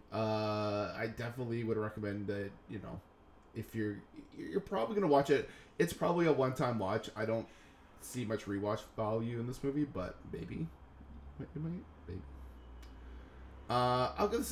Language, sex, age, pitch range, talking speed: English, male, 20-39, 105-125 Hz, 150 wpm